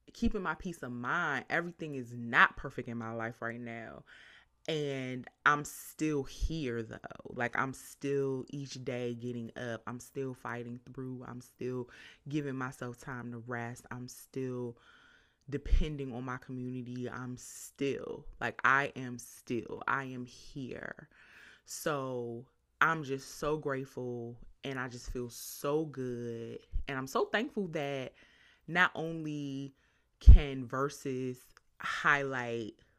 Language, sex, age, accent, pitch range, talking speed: English, female, 20-39, American, 125-155 Hz, 135 wpm